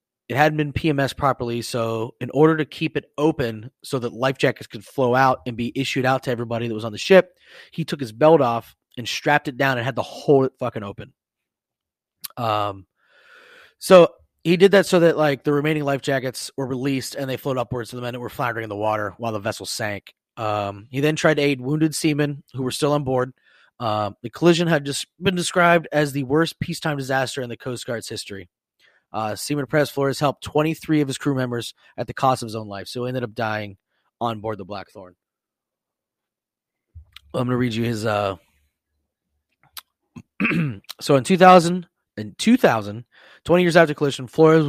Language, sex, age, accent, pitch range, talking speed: English, male, 30-49, American, 115-150 Hz, 205 wpm